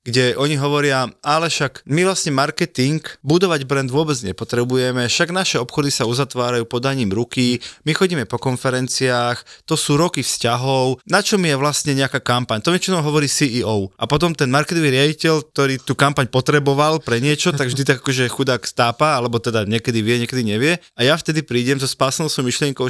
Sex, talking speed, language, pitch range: male, 180 wpm, Slovak, 125-155 Hz